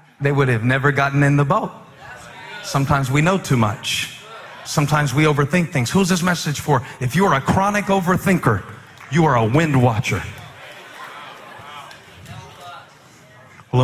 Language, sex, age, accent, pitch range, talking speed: English, male, 40-59, American, 130-175 Hz, 145 wpm